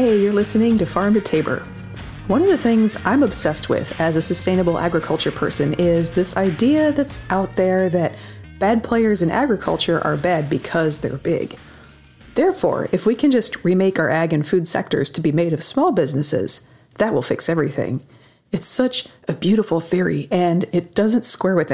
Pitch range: 155-200 Hz